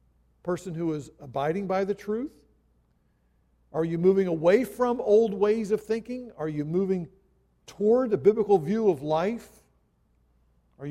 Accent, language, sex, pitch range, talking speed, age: American, English, male, 145-205 Hz, 145 wpm, 50-69